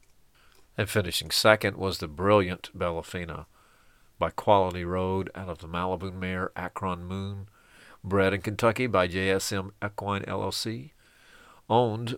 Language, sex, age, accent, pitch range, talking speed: English, male, 50-69, American, 85-100 Hz, 135 wpm